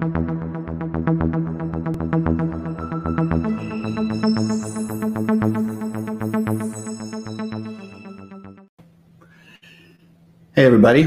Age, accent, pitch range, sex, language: 50-69, American, 105-130 Hz, male, English